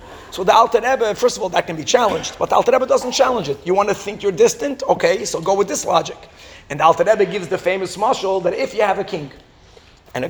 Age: 30-49